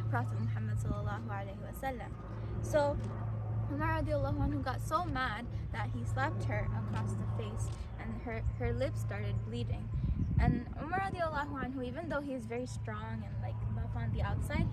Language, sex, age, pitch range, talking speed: English, female, 10-29, 110-115 Hz, 145 wpm